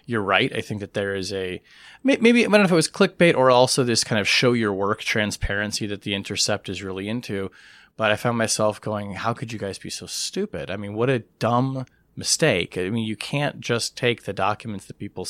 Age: 30-49